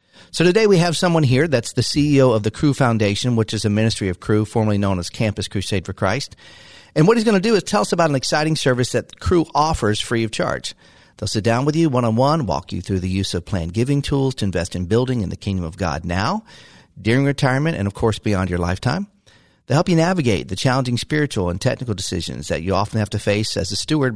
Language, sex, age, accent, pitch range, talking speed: English, male, 40-59, American, 100-130 Hz, 240 wpm